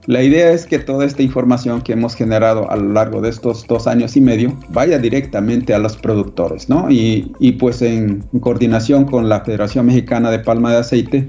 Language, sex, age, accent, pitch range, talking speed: Spanish, male, 40-59, Mexican, 110-135 Hz, 200 wpm